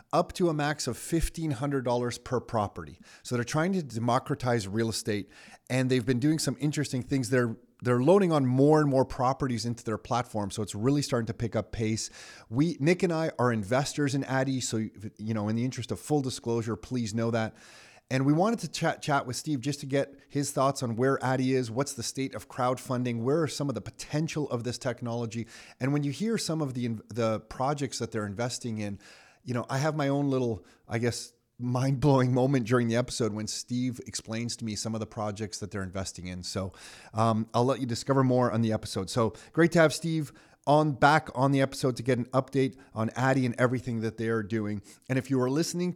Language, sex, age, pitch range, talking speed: English, male, 30-49, 115-140 Hz, 225 wpm